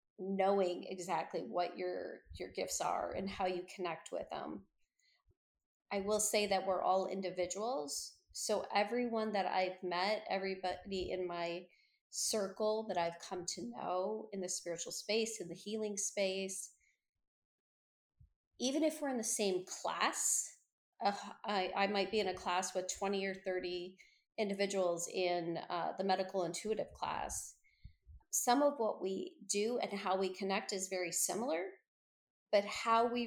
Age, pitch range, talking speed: 30-49, 185-215 Hz, 150 wpm